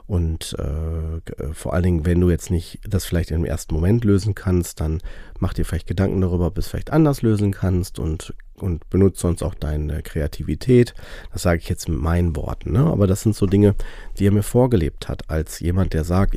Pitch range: 80-95 Hz